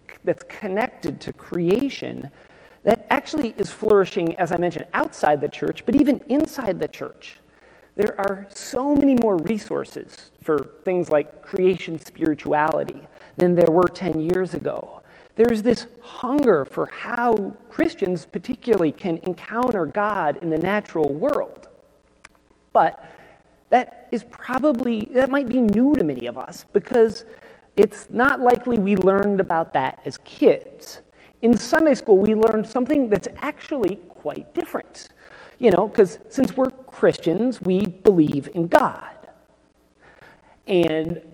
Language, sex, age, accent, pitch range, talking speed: English, male, 40-59, American, 170-245 Hz, 135 wpm